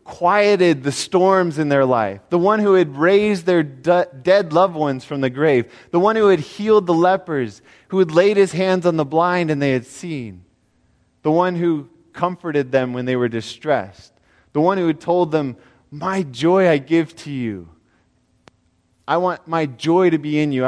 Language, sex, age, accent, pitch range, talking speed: English, male, 20-39, American, 115-175 Hz, 190 wpm